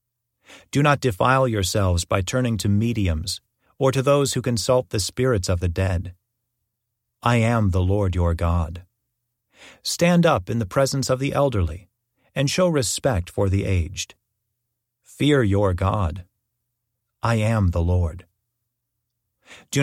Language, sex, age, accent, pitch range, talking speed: English, male, 40-59, American, 95-125 Hz, 140 wpm